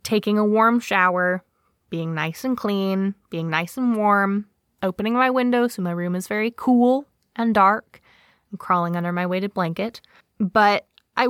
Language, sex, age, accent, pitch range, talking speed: English, female, 20-39, American, 180-225 Hz, 160 wpm